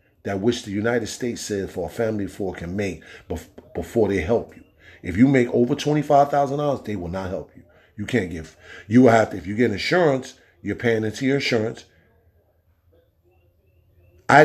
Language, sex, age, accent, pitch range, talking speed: English, male, 40-59, American, 90-130 Hz, 185 wpm